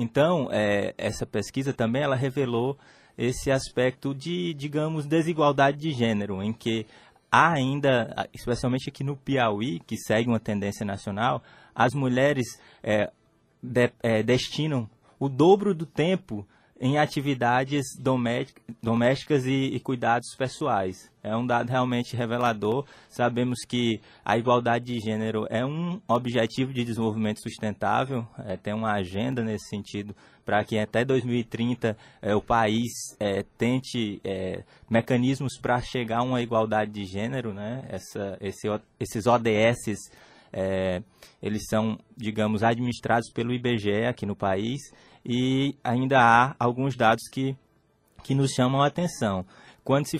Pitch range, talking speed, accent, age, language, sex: 110-135 Hz, 125 wpm, Brazilian, 20-39, Portuguese, male